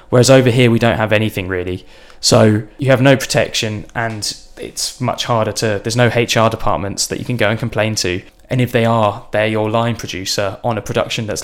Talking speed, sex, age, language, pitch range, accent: 215 wpm, male, 10-29, English, 105-120 Hz, British